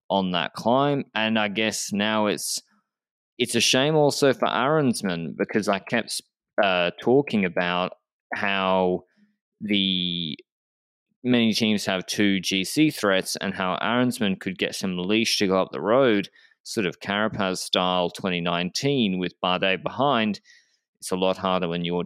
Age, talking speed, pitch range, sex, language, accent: 20-39, 145 wpm, 90-110 Hz, male, English, Australian